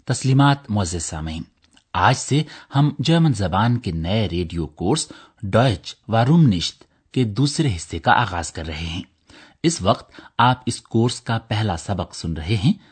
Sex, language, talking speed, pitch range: male, Urdu, 160 wpm, 90-135 Hz